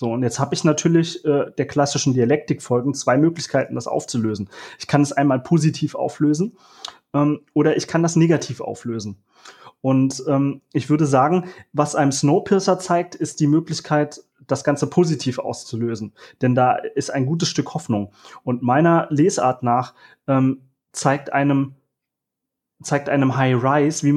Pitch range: 135-155 Hz